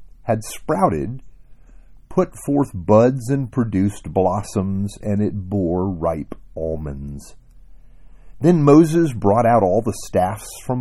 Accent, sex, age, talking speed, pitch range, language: American, male, 50-69, 115 wpm, 95-125 Hz, English